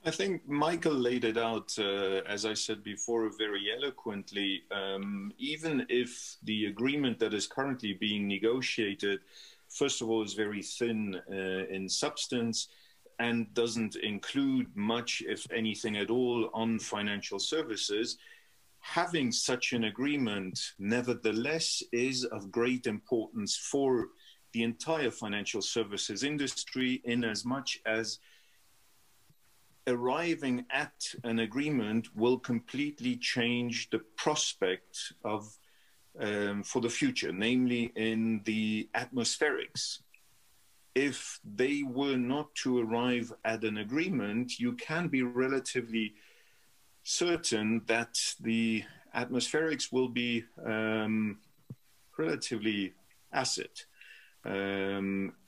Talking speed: 110 wpm